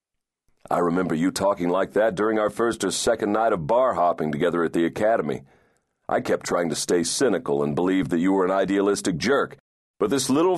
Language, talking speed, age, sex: English, 205 wpm, 40-59, male